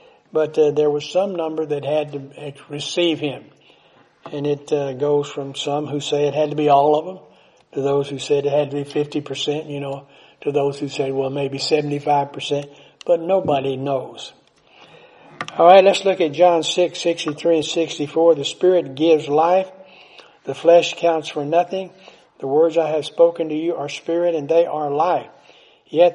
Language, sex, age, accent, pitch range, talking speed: English, male, 60-79, American, 145-170 Hz, 190 wpm